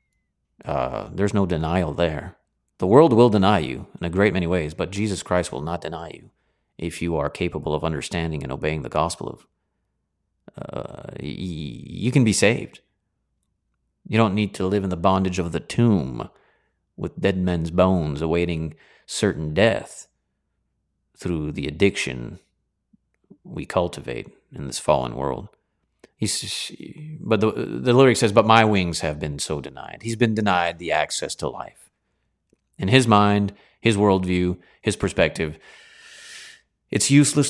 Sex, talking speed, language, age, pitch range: male, 150 wpm, English, 40-59, 80-105 Hz